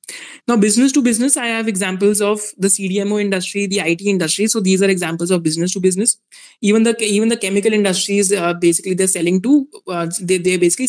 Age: 20-39